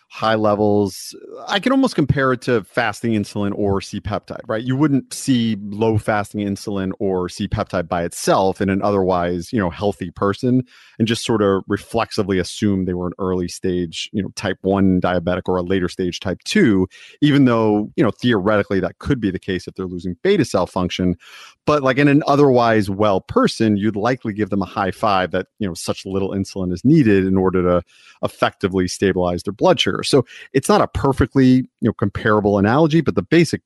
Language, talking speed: English, 195 wpm